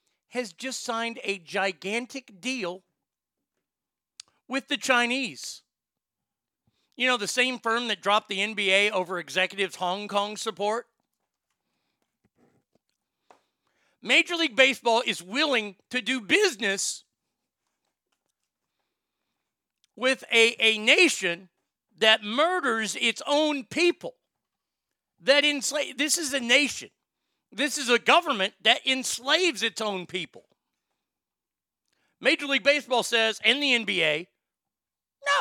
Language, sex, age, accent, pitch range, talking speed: English, male, 40-59, American, 205-275 Hz, 105 wpm